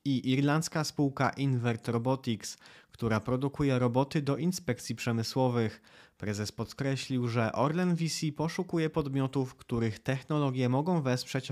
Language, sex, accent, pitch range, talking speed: Polish, male, native, 110-140 Hz, 115 wpm